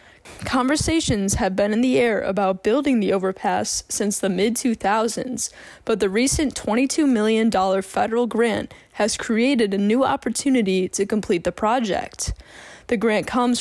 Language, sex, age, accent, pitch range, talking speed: English, female, 10-29, American, 195-250 Hz, 140 wpm